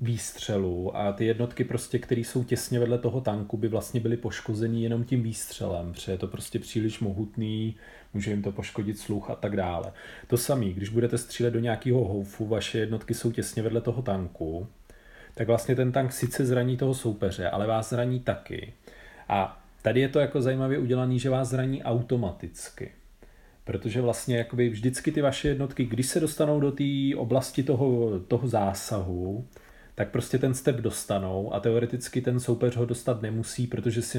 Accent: native